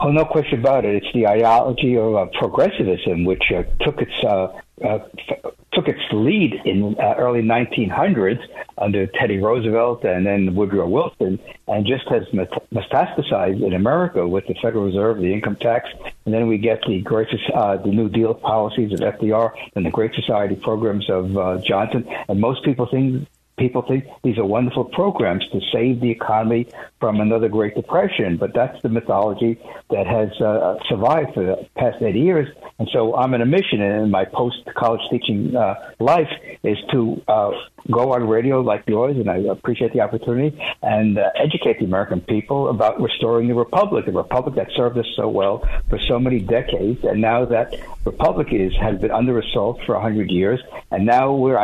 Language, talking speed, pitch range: English, 185 wpm, 105-125 Hz